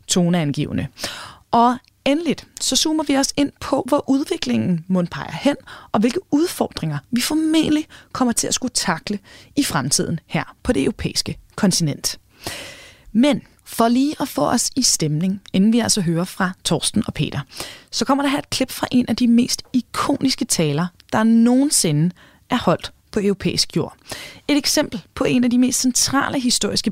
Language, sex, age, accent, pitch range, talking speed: Danish, female, 20-39, native, 185-275 Hz, 165 wpm